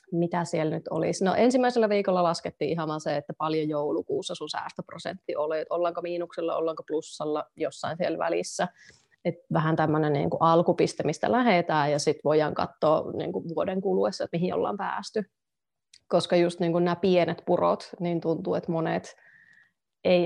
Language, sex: Finnish, female